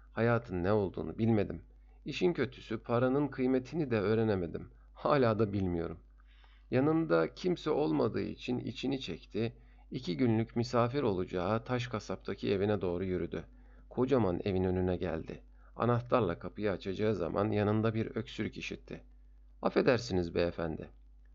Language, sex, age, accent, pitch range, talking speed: Turkish, male, 50-69, native, 90-120 Hz, 120 wpm